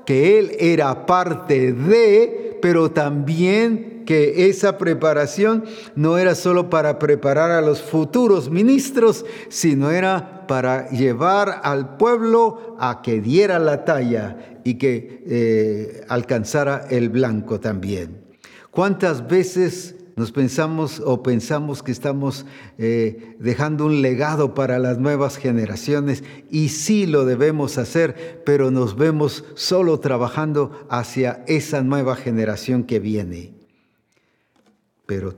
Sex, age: male, 50-69